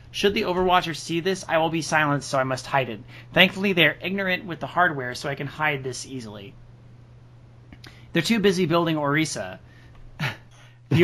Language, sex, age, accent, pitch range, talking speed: English, male, 30-49, American, 125-165 Hz, 180 wpm